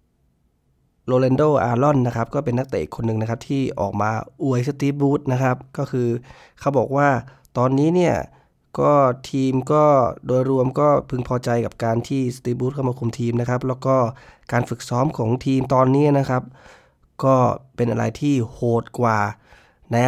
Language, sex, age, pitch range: Thai, male, 20-39, 115-135 Hz